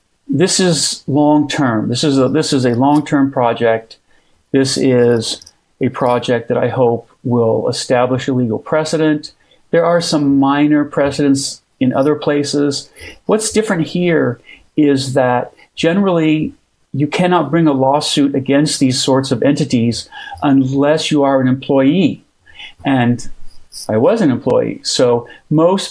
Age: 40-59